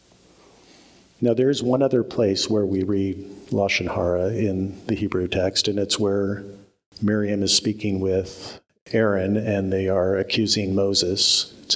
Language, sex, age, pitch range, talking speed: English, male, 50-69, 100-115 Hz, 150 wpm